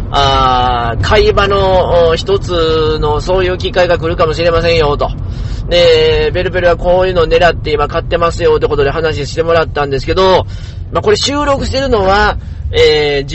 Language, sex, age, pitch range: Japanese, male, 40-59, 140-195 Hz